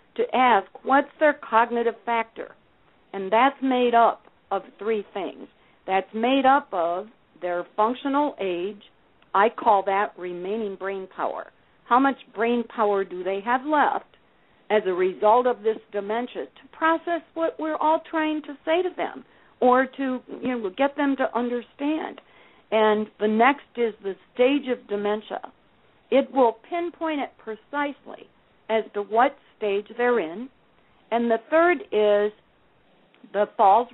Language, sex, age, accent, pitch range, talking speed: English, female, 50-69, American, 205-255 Hz, 145 wpm